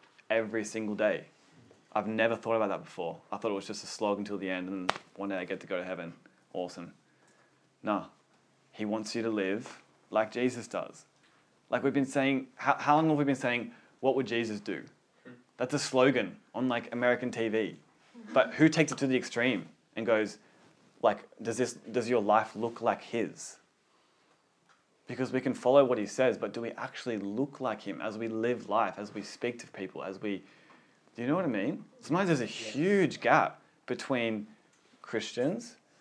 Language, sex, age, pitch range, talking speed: English, male, 20-39, 105-125 Hz, 195 wpm